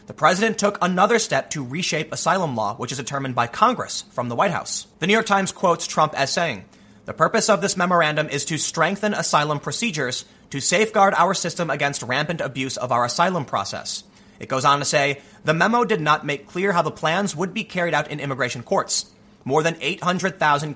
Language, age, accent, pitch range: English, 30-49, American, 135-190 Hz